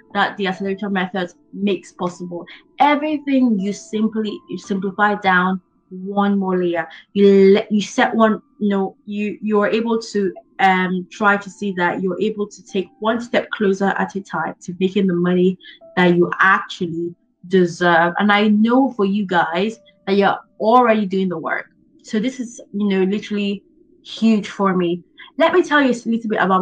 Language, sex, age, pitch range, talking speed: English, female, 20-39, 180-215 Hz, 175 wpm